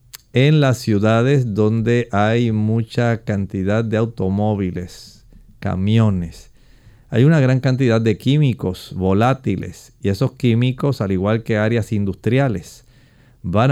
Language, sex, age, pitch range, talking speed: English, male, 40-59, 110-130 Hz, 115 wpm